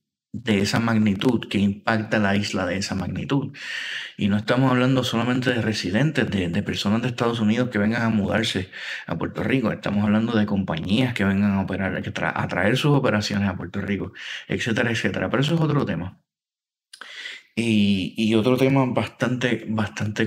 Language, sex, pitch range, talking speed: Spanish, male, 100-135 Hz, 170 wpm